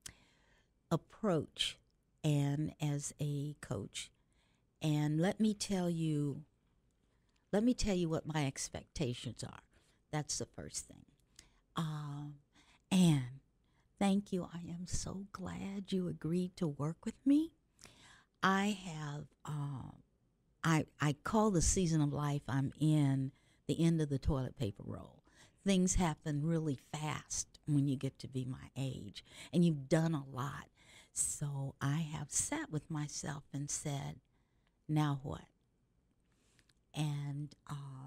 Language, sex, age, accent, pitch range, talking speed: English, female, 60-79, American, 140-170 Hz, 130 wpm